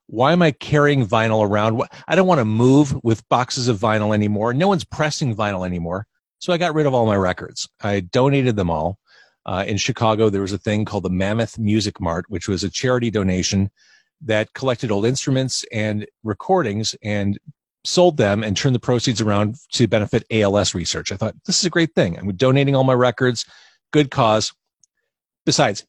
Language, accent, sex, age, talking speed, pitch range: English, American, male, 40-59, 190 wpm, 100-135 Hz